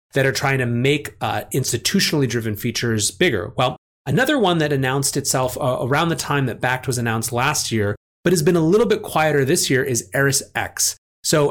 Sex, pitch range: male, 120-150 Hz